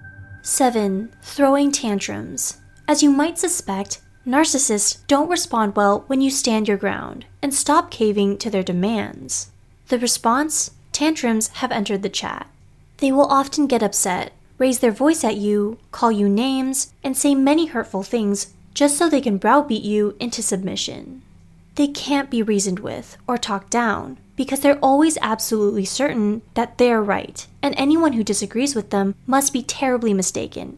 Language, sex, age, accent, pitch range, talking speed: English, female, 20-39, American, 205-280 Hz, 160 wpm